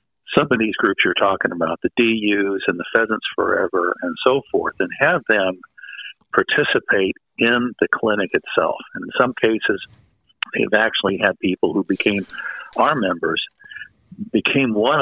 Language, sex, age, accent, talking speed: English, male, 50-69, American, 150 wpm